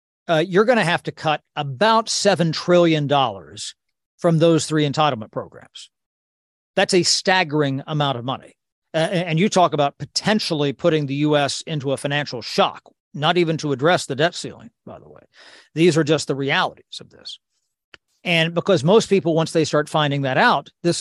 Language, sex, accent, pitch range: English, male, American, 145-180 Hz